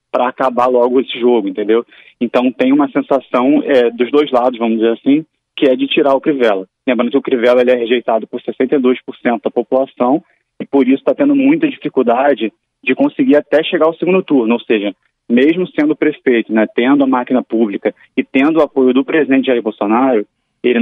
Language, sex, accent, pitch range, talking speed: Portuguese, male, Brazilian, 120-140 Hz, 195 wpm